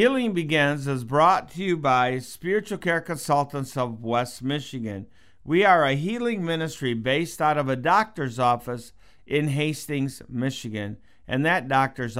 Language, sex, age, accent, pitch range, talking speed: English, male, 50-69, American, 120-155 Hz, 150 wpm